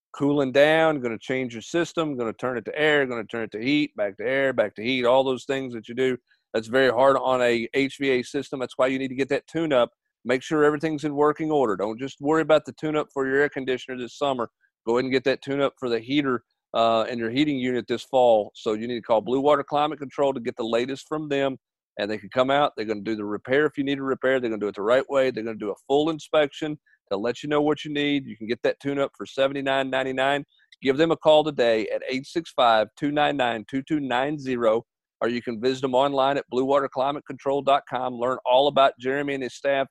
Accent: American